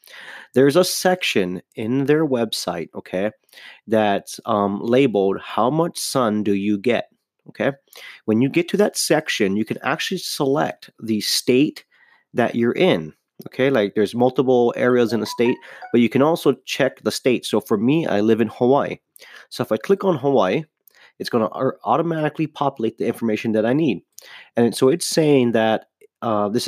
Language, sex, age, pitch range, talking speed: English, male, 30-49, 110-140 Hz, 175 wpm